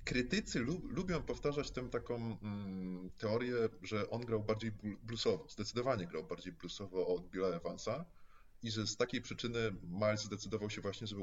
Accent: native